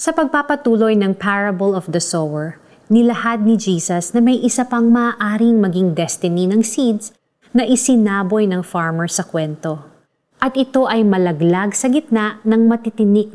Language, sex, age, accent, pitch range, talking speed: Filipino, female, 30-49, native, 185-235 Hz, 150 wpm